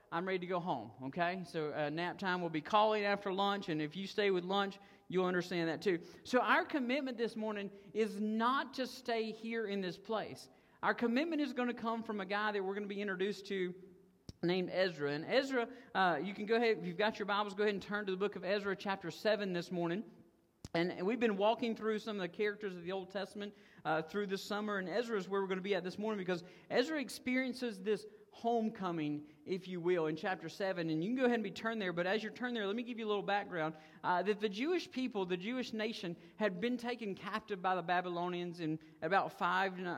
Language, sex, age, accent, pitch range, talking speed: English, male, 50-69, American, 180-230 Hz, 240 wpm